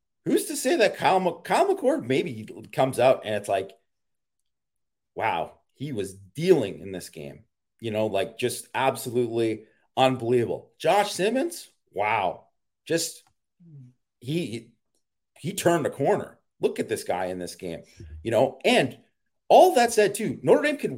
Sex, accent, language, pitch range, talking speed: male, American, English, 105-160 Hz, 150 wpm